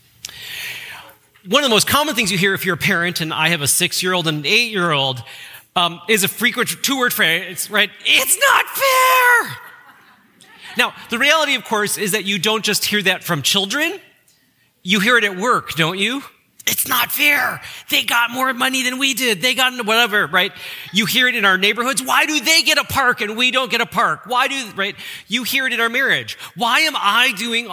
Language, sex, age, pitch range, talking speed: English, male, 30-49, 165-245 Hz, 205 wpm